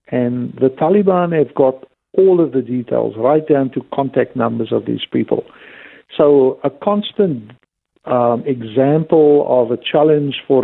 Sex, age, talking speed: male, 60-79, 145 wpm